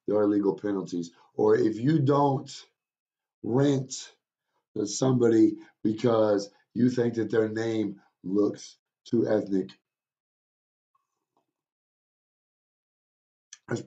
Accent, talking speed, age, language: American, 85 wpm, 50-69, English